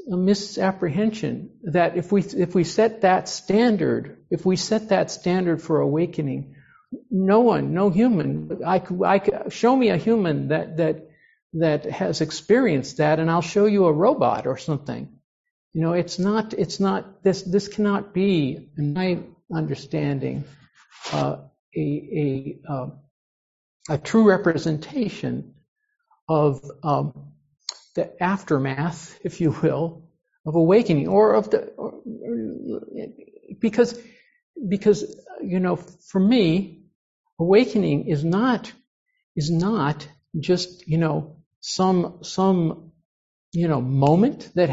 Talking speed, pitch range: 125 wpm, 155-205 Hz